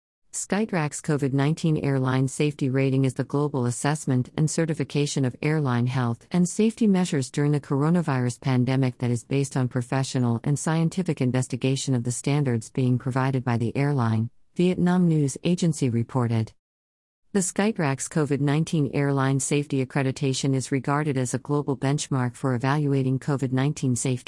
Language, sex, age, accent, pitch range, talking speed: English, female, 40-59, American, 130-150 Hz, 140 wpm